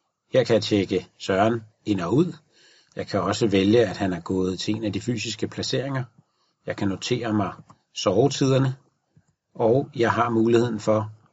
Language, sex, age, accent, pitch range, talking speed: Danish, male, 40-59, native, 110-140 Hz, 170 wpm